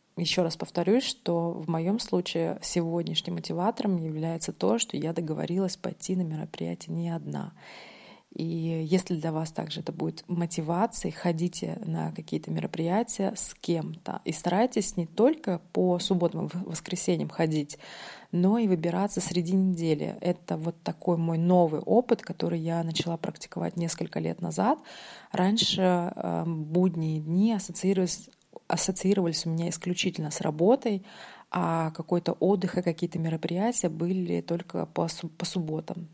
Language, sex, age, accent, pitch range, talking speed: Russian, female, 20-39, native, 165-185 Hz, 135 wpm